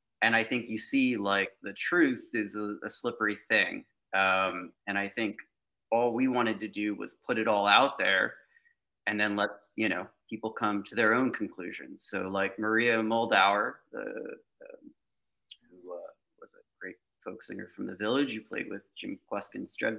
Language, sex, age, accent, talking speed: English, male, 30-49, American, 185 wpm